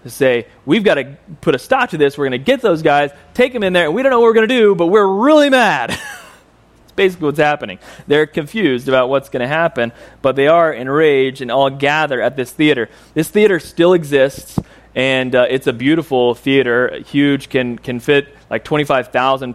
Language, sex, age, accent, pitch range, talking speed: English, male, 30-49, American, 125-155 Hz, 215 wpm